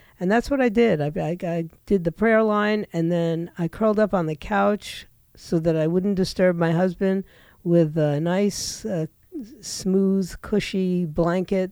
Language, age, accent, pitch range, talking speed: English, 50-69, American, 165-205 Hz, 175 wpm